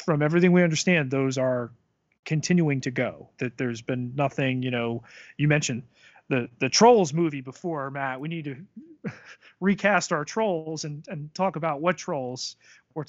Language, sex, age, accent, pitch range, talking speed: English, male, 30-49, American, 125-165 Hz, 165 wpm